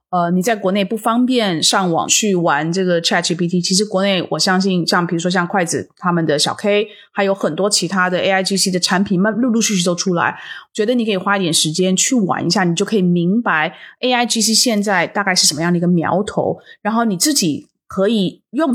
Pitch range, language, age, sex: 180-230 Hz, Chinese, 20-39, female